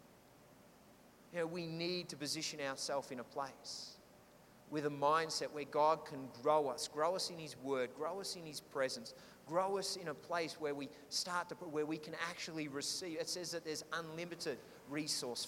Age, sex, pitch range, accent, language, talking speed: 30-49, male, 150-175 Hz, Australian, English, 185 wpm